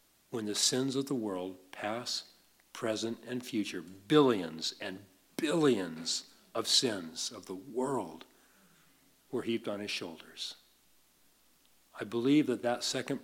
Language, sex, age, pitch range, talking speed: English, male, 50-69, 110-135 Hz, 125 wpm